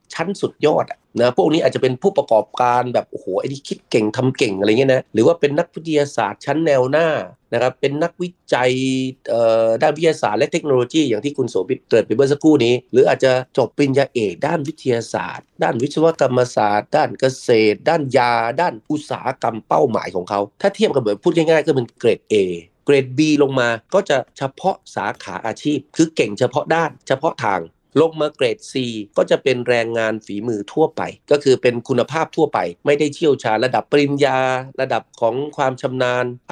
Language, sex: Thai, male